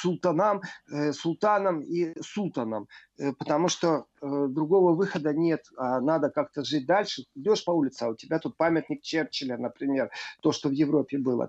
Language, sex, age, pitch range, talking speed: Russian, male, 40-59, 150-195 Hz, 155 wpm